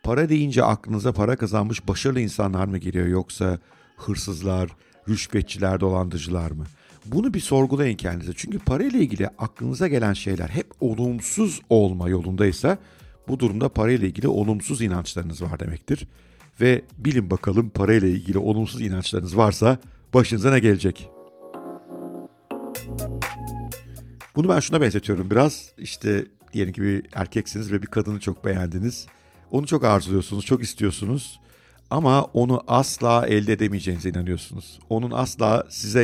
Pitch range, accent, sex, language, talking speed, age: 95-120 Hz, native, male, Turkish, 130 wpm, 60-79